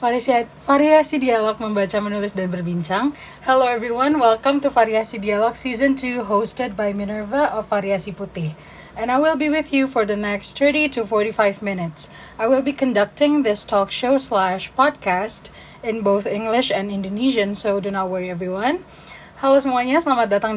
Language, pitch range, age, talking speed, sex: Indonesian, 200-255 Hz, 20-39, 160 wpm, female